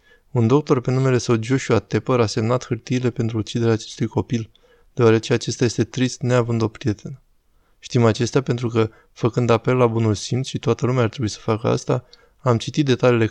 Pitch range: 110-125 Hz